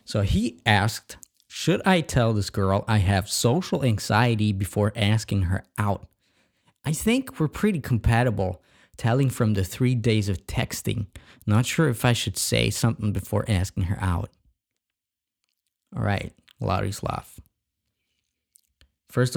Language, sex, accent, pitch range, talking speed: English, male, American, 95-125 Hz, 135 wpm